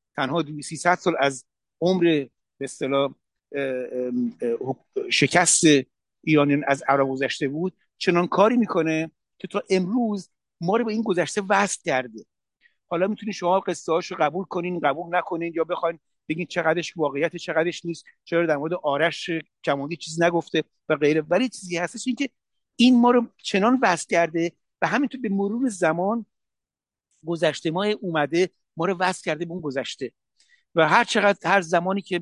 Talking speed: 150 wpm